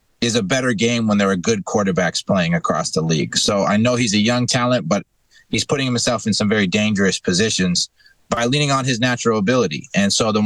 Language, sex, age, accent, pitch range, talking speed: English, male, 30-49, American, 100-125 Hz, 220 wpm